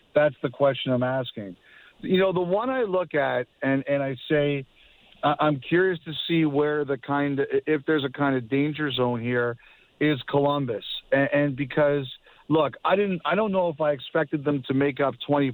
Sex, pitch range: male, 135-155 Hz